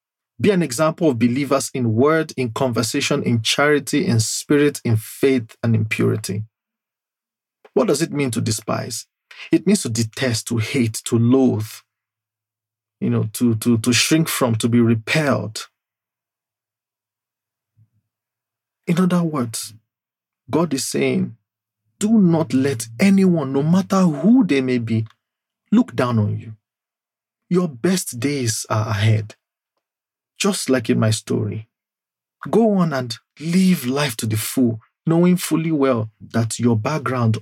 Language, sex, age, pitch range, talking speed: English, male, 40-59, 110-150 Hz, 140 wpm